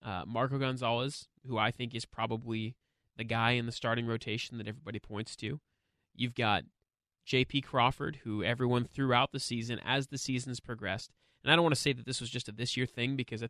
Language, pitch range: English, 115-140 Hz